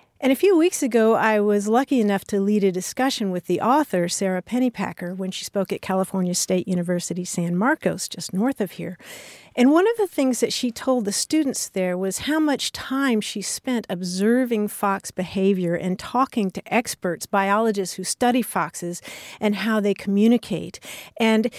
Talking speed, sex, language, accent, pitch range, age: 180 wpm, female, English, American, 185-235 Hz, 50-69